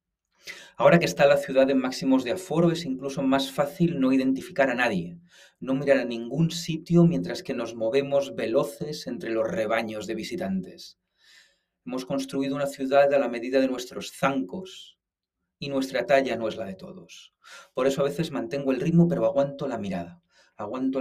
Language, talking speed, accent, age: Spanish, 175 wpm, Spanish, 40-59